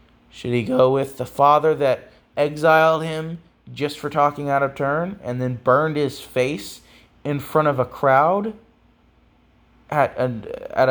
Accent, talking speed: American, 145 wpm